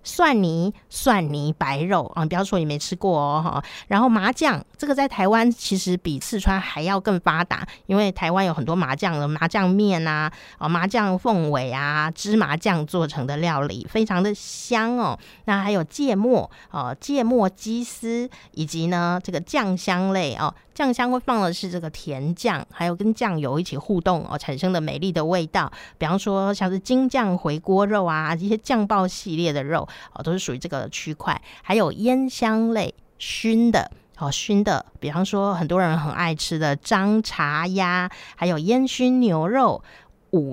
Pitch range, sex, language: 160-225 Hz, female, Chinese